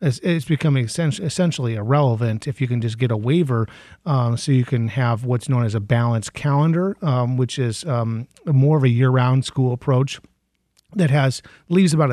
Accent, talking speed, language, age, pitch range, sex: American, 180 wpm, English, 40-59, 120-145 Hz, male